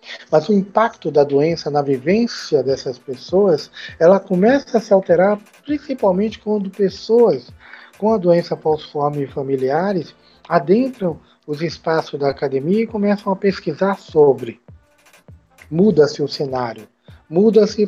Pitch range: 145-210 Hz